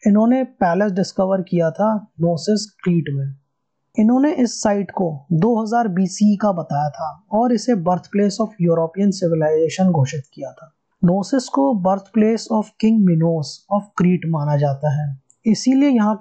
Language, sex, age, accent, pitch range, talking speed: Hindi, male, 20-39, native, 160-210 Hz, 150 wpm